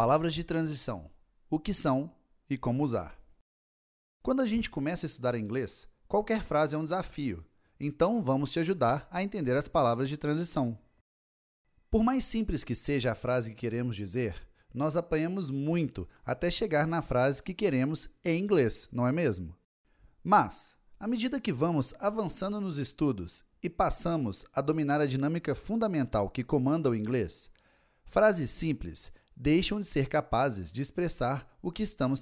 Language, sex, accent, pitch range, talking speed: Portuguese, male, Brazilian, 120-170 Hz, 160 wpm